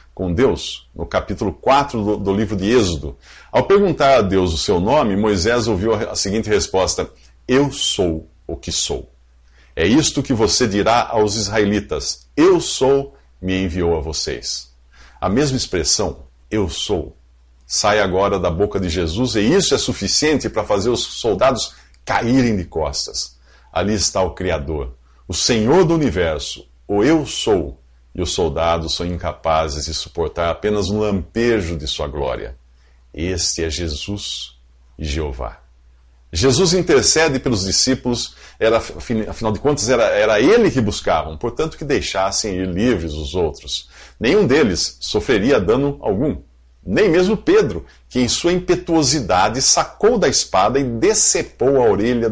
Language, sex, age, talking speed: English, male, 50-69, 150 wpm